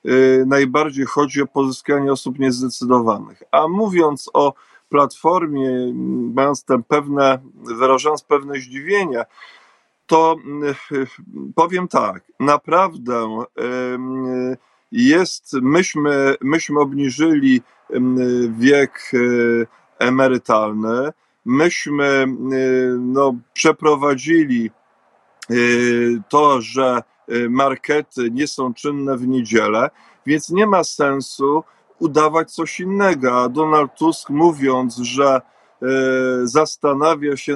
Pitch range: 130-155 Hz